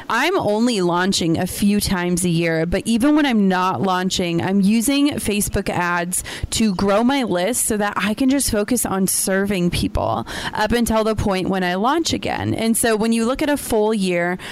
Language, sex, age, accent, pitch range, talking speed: English, female, 30-49, American, 185-225 Hz, 200 wpm